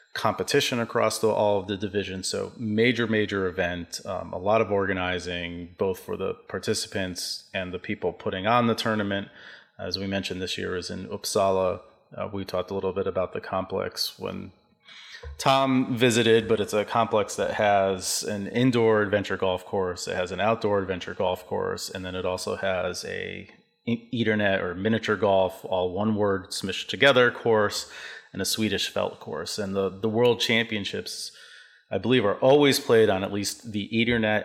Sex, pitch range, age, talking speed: male, 95-115 Hz, 30-49, 175 wpm